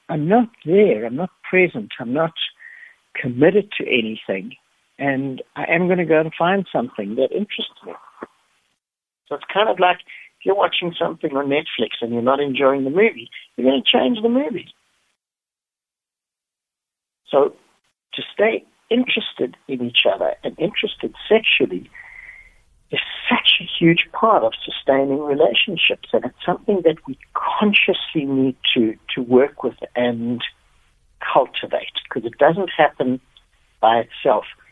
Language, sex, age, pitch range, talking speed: English, male, 60-79, 130-185 Hz, 145 wpm